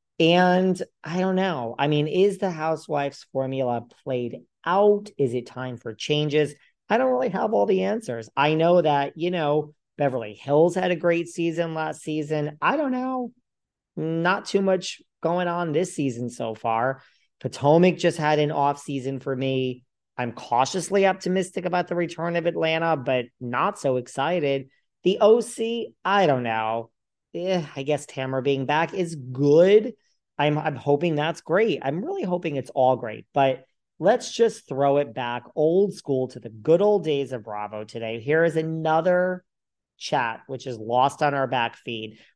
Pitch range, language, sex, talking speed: 130-175 Hz, English, male, 170 wpm